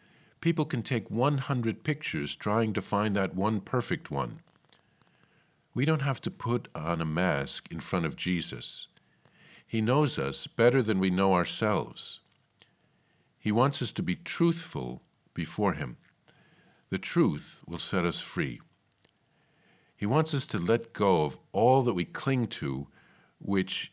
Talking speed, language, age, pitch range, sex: 150 wpm, English, 50-69, 95-130 Hz, male